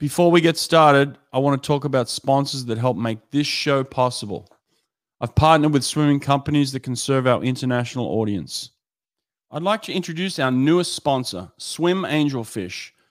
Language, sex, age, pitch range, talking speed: English, male, 40-59, 130-160 Hz, 165 wpm